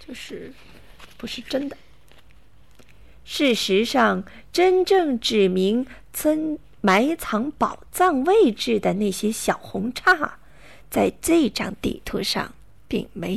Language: Chinese